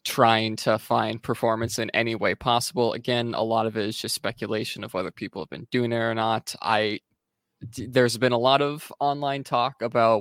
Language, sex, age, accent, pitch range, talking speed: English, male, 20-39, American, 110-125 Hz, 200 wpm